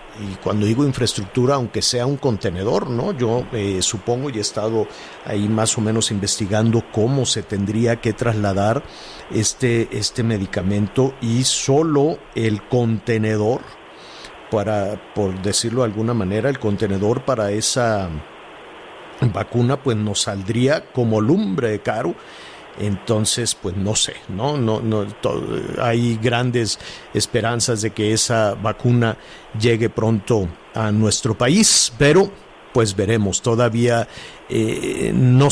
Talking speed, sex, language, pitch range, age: 130 wpm, male, Spanish, 110-130 Hz, 50-69